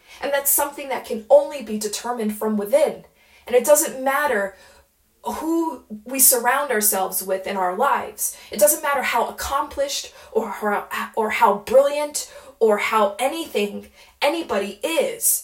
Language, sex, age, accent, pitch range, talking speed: English, female, 20-39, American, 210-280 Hz, 140 wpm